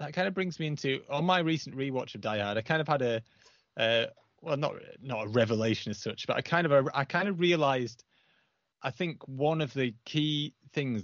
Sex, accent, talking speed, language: male, British, 225 wpm, English